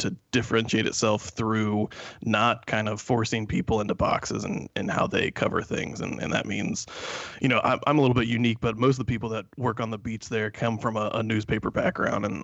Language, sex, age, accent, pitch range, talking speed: English, male, 20-39, American, 110-120 Hz, 225 wpm